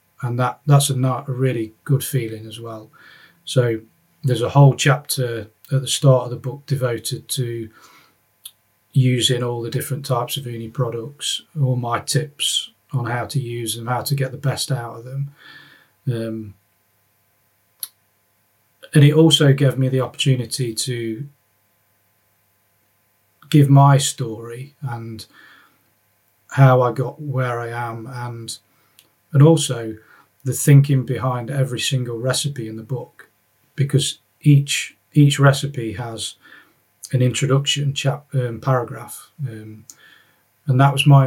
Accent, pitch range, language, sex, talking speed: British, 110-140 Hz, English, male, 135 wpm